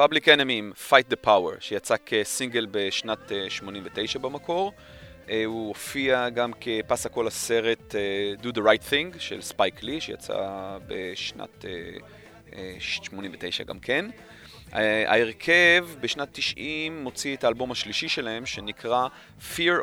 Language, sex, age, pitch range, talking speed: Hebrew, male, 30-49, 110-140 Hz, 115 wpm